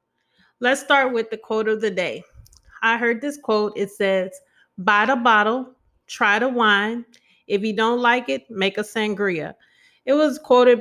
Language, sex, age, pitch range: English, female, 30-49, 200-245 Hz